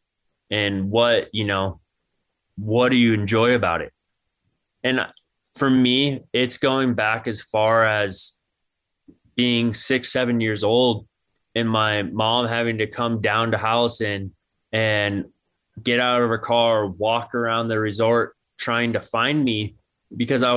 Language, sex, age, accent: English, male, 20-39, American